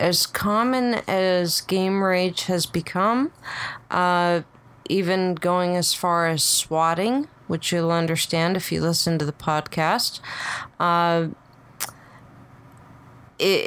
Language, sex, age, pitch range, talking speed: English, female, 30-49, 155-180 Hz, 110 wpm